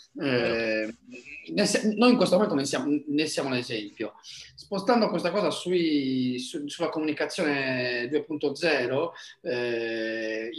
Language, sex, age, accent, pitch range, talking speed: Italian, male, 40-59, native, 130-175 Hz, 90 wpm